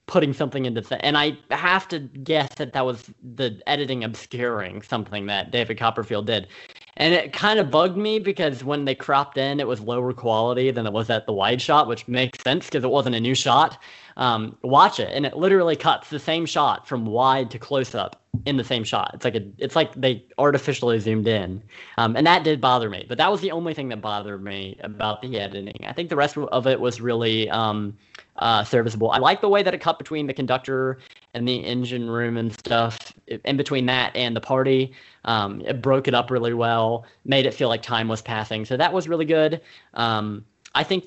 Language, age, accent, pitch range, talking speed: English, 10-29, American, 115-145 Hz, 220 wpm